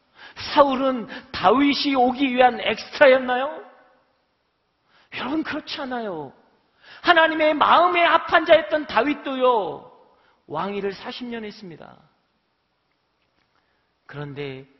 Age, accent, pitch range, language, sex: 40-59, native, 220-295 Hz, Korean, male